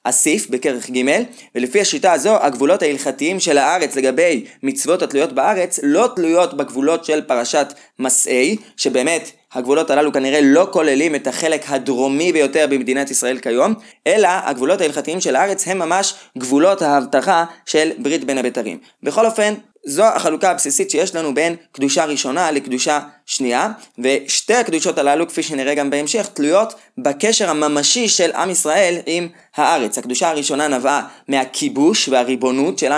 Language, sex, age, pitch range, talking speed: Hebrew, male, 20-39, 135-180 Hz, 145 wpm